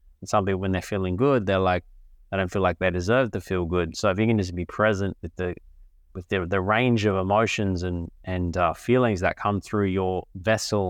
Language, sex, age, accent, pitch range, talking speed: English, male, 20-39, Australian, 90-110 Hz, 230 wpm